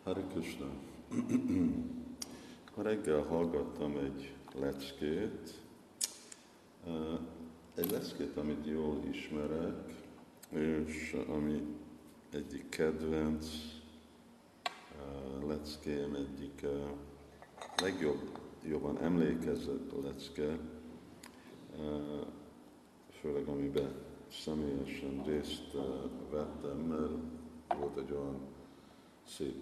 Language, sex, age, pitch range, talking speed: Hungarian, male, 50-69, 70-75 Hz, 60 wpm